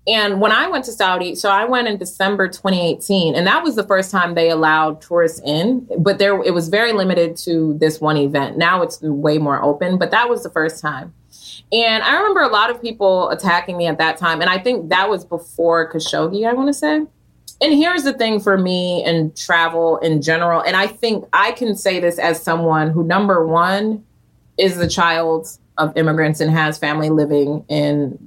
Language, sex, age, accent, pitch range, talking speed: English, female, 30-49, American, 155-205 Hz, 210 wpm